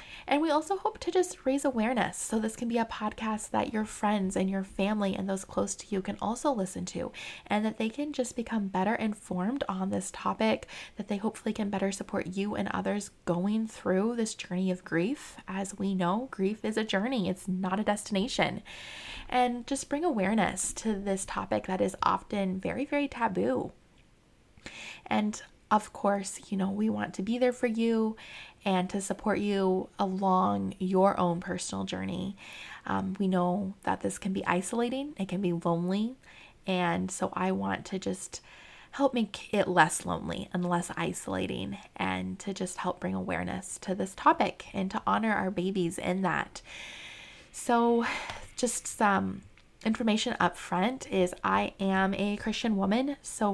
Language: English